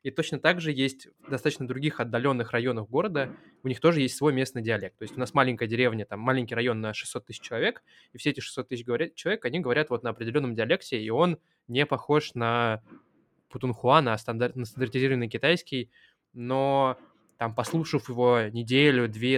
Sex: male